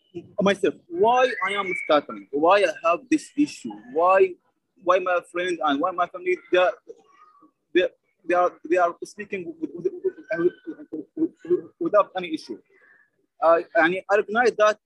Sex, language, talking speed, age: male, English, 135 wpm, 30-49